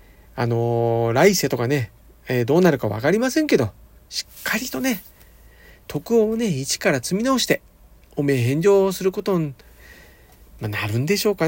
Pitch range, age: 145-235 Hz, 40-59